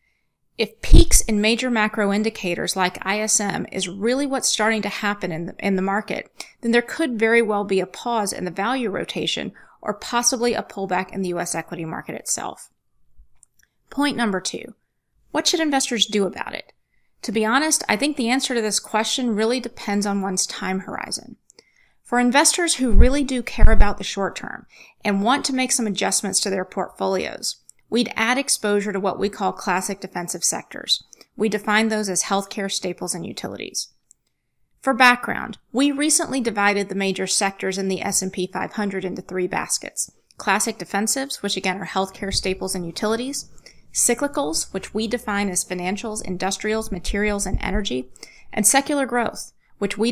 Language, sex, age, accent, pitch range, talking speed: English, female, 30-49, American, 190-235 Hz, 170 wpm